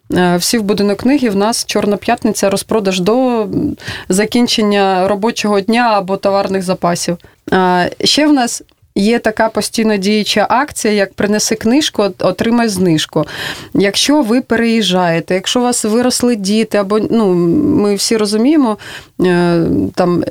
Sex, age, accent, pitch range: female, 30-49, native, 195-235 Hz